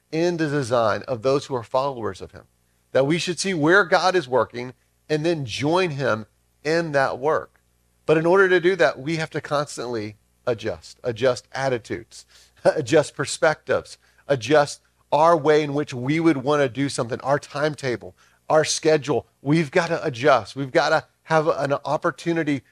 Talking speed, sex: 165 wpm, male